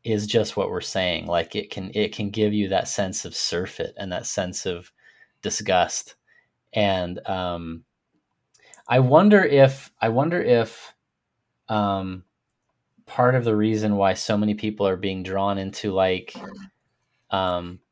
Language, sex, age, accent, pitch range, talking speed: English, male, 30-49, American, 95-115 Hz, 145 wpm